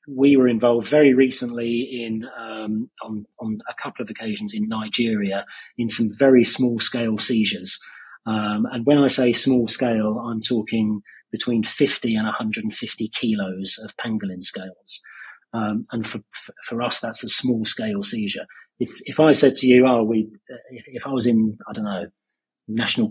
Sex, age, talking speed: male, 30-49, 170 wpm